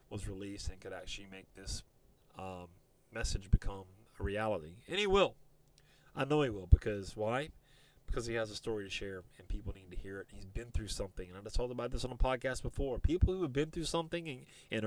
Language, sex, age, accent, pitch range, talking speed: English, male, 30-49, American, 105-140 Hz, 225 wpm